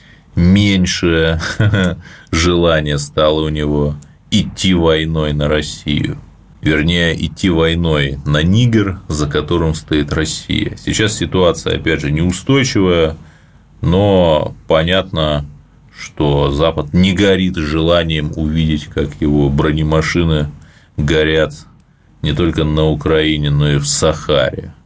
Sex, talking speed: male, 105 wpm